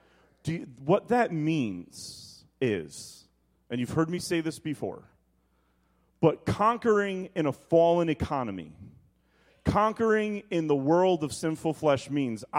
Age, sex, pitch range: 40-59, male, 110-160 Hz